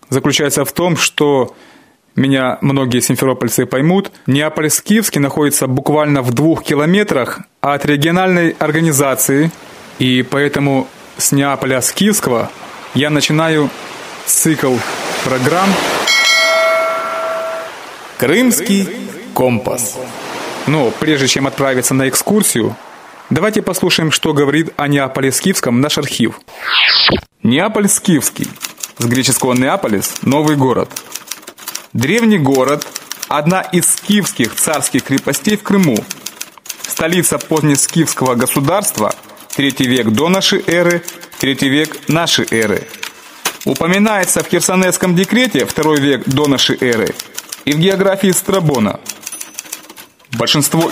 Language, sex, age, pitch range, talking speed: Russian, male, 20-39, 135-185 Hz, 95 wpm